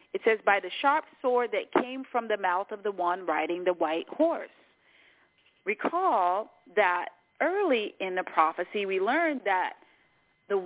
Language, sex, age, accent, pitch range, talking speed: English, female, 30-49, American, 195-300 Hz, 160 wpm